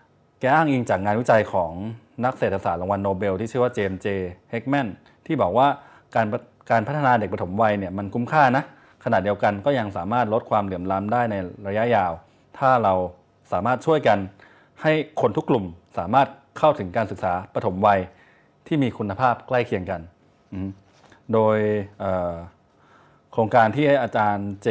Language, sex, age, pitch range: Thai, male, 20-39, 100-125 Hz